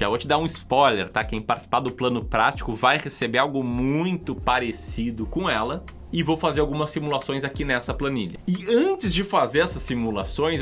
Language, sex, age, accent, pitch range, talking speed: Portuguese, male, 20-39, Brazilian, 115-165 Hz, 185 wpm